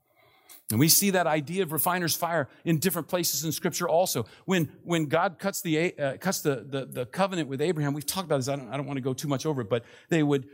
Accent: American